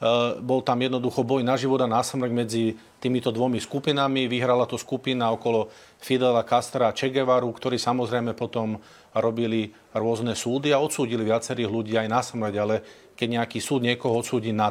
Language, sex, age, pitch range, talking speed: Slovak, male, 40-59, 110-130 Hz, 165 wpm